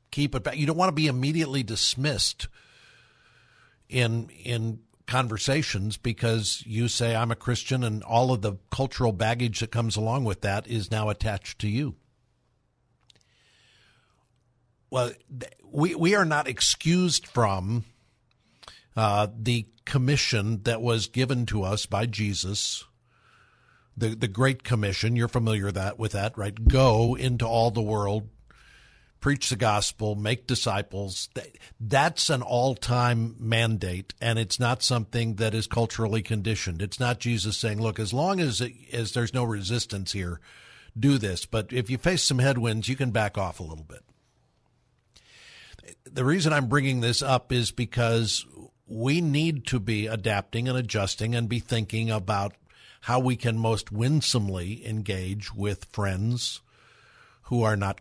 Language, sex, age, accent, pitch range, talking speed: English, male, 60-79, American, 110-125 Hz, 150 wpm